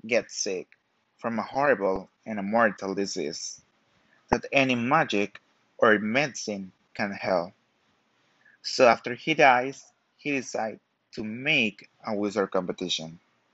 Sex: male